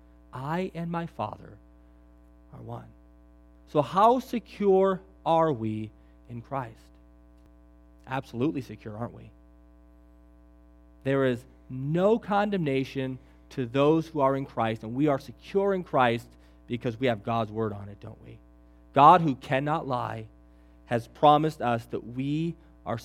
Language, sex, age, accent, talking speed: English, male, 30-49, American, 135 wpm